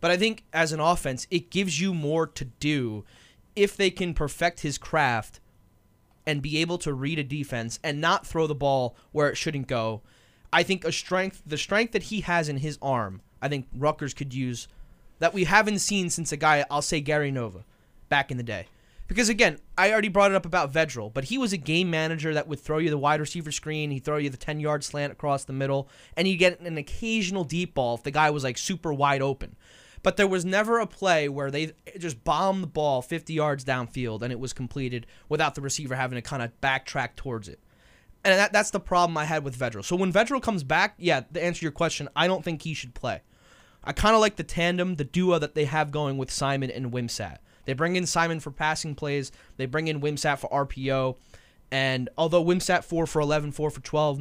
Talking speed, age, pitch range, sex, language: 225 wpm, 20-39, 135-175 Hz, male, English